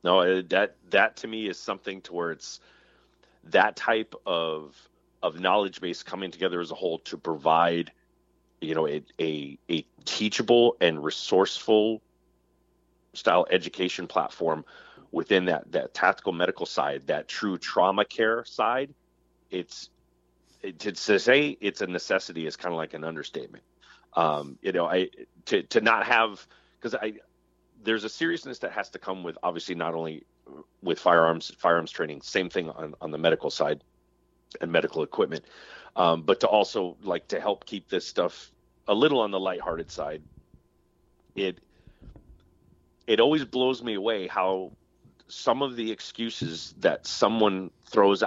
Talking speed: 150 wpm